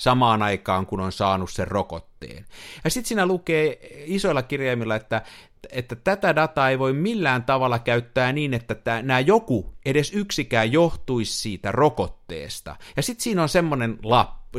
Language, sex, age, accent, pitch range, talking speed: Finnish, male, 50-69, native, 105-150 Hz, 150 wpm